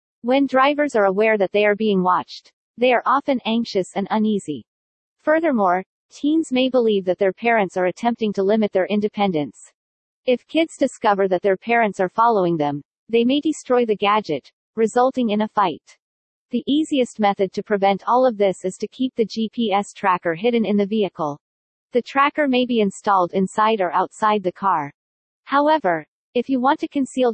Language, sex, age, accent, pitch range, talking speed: English, female, 40-59, American, 190-245 Hz, 175 wpm